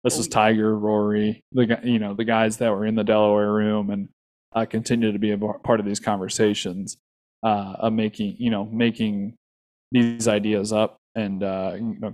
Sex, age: male, 20-39